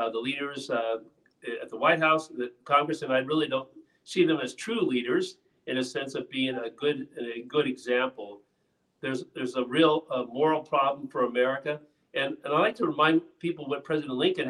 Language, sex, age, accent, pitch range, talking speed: English, male, 50-69, American, 130-170 Hz, 200 wpm